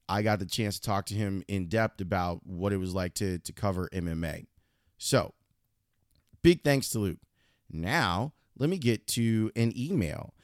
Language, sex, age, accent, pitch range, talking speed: English, male, 30-49, American, 95-115 Hz, 180 wpm